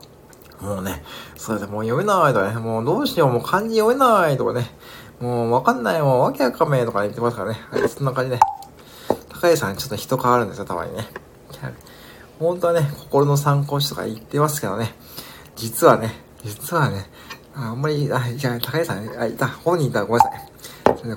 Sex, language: male, Japanese